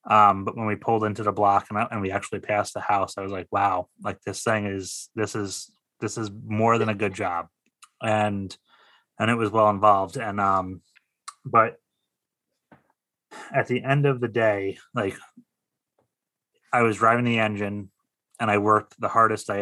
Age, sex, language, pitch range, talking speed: 30-49, male, English, 100-110 Hz, 180 wpm